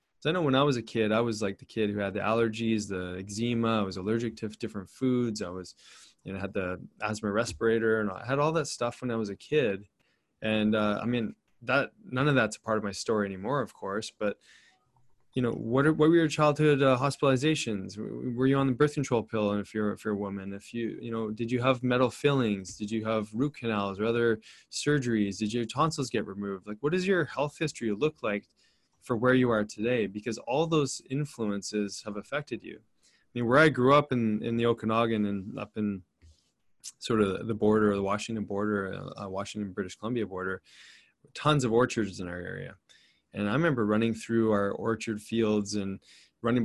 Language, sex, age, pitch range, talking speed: English, male, 20-39, 105-125 Hz, 210 wpm